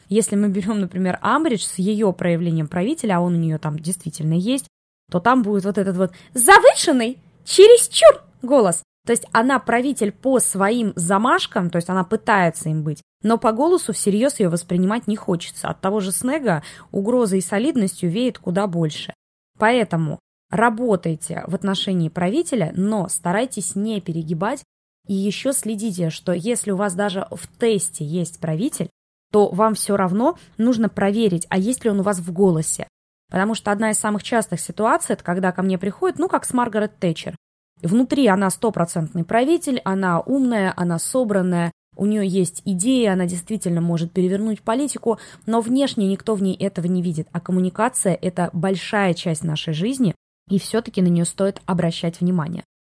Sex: female